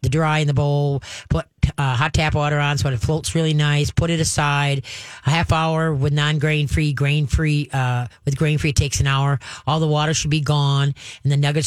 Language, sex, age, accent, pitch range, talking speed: English, female, 40-59, American, 135-160 Hz, 225 wpm